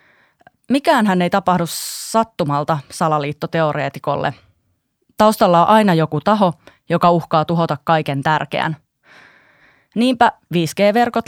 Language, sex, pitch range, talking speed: Finnish, female, 155-190 Hz, 95 wpm